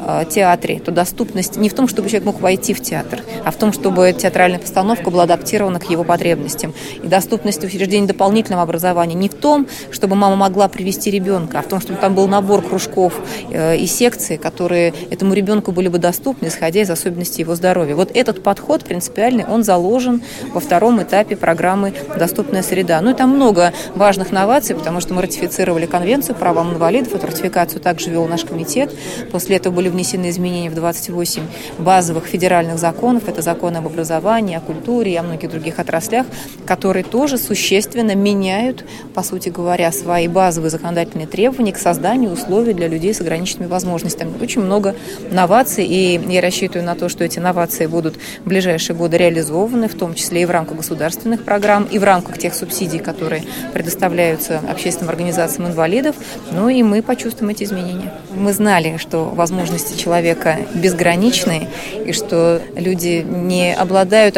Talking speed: 170 wpm